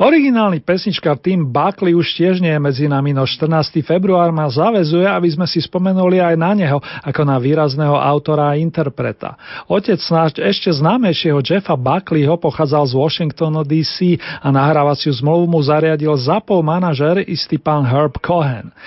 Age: 40-59